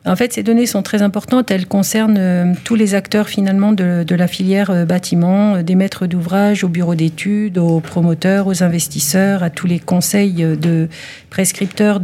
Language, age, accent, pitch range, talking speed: French, 50-69, French, 175-210 Hz, 190 wpm